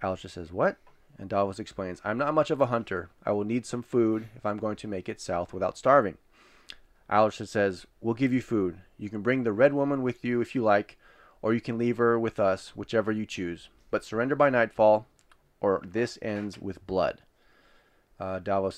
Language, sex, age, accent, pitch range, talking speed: English, male, 20-39, American, 95-120 Hz, 205 wpm